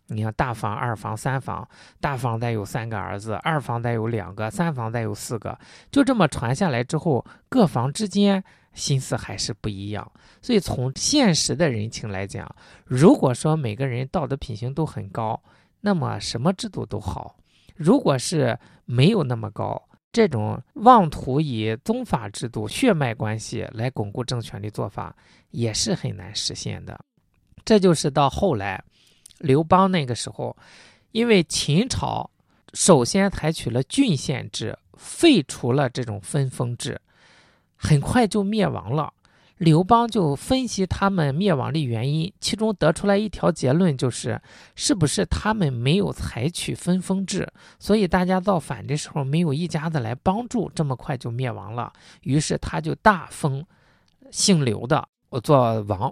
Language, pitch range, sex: Chinese, 120-185 Hz, male